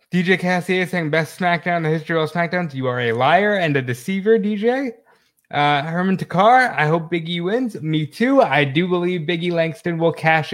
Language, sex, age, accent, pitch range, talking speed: English, male, 20-39, American, 145-185 Hz, 200 wpm